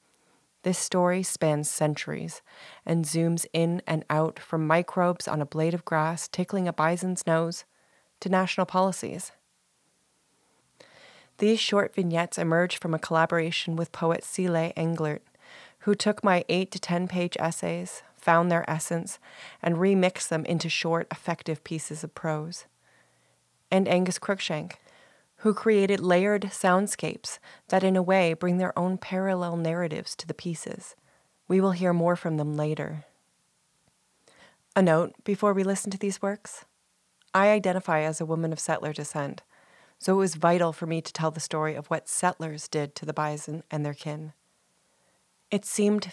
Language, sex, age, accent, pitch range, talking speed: English, female, 30-49, American, 155-185 Hz, 155 wpm